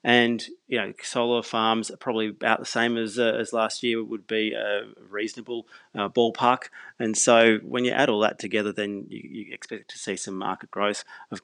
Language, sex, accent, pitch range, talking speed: English, male, Australian, 100-110 Hz, 205 wpm